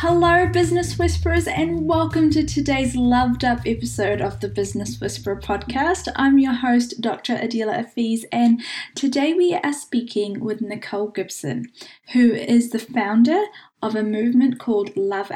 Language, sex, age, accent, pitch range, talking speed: English, female, 10-29, Australian, 210-255 Hz, 150 wpm